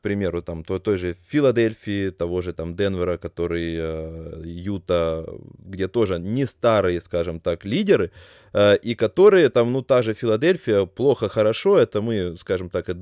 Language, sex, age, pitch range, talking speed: Russian, male, 20-39, 90-115 Hz, 150 wpm